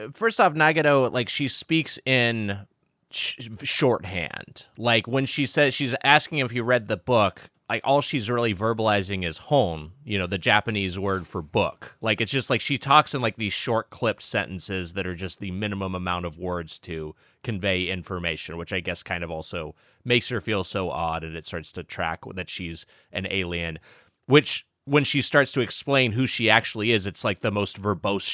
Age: 30-49